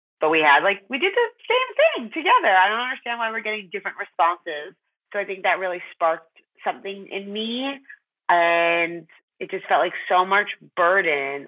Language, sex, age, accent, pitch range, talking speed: English, female, 30-49, American, 155-190 Hz, 185 wpm